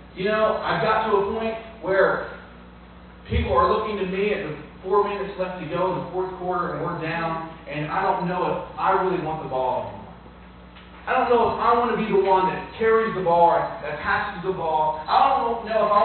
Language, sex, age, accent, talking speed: English, male, 30-49, American, 230 wpm